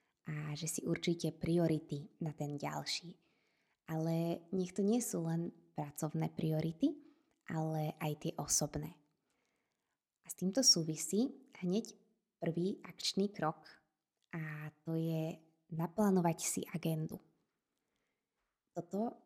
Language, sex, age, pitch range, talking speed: Slovak, female, 20-39, 160-210 Hz, 110 wpm